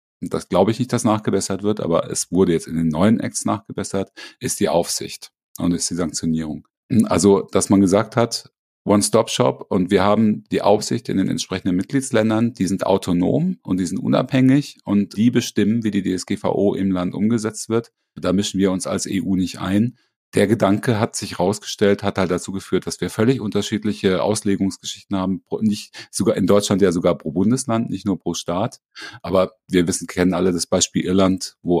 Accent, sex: German, male